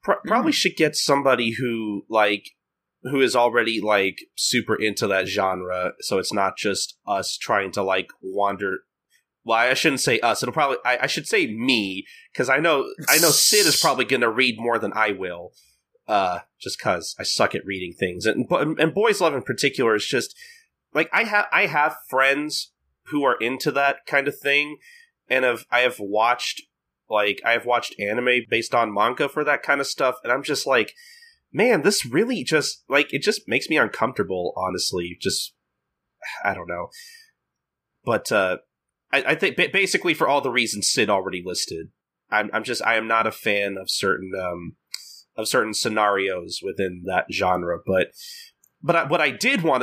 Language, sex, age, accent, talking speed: English, male, 30-49, American, 185 wpm